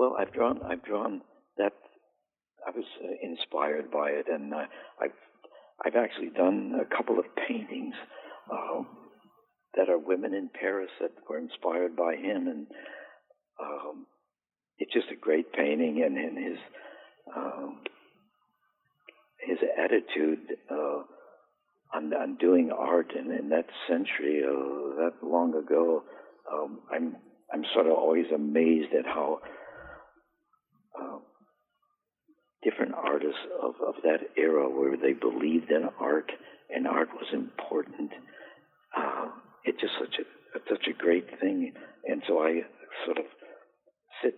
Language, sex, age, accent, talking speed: English, male, 60-79, American, 130 wpm